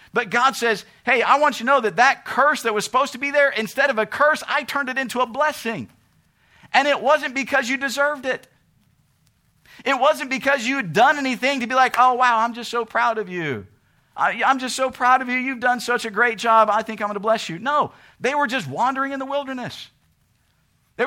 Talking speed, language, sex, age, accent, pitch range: 235 wpm, English, male, 50-69, American, 170-265 Hz